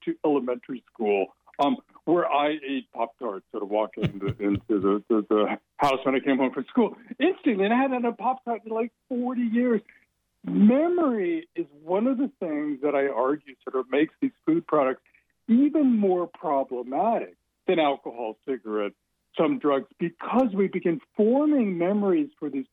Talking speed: 170 wpm